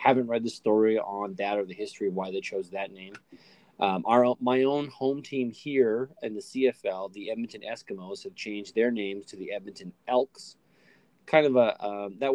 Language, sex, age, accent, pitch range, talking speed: English, male, 20-39, American, 105-130 Hz, 200 wpm